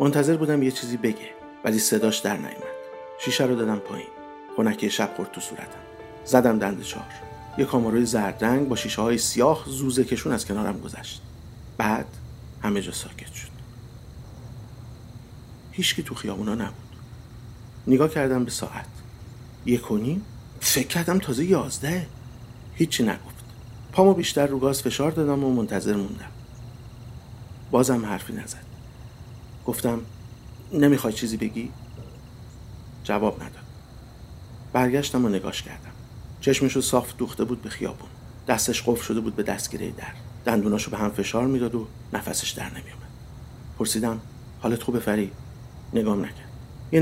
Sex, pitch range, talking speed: male, 110-125 Hz, 130 wpm